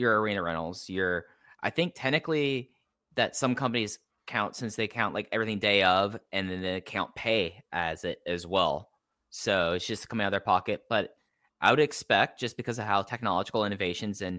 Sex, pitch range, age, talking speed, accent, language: male, 95-115 Hz, 10-29, 190 wpm, American, English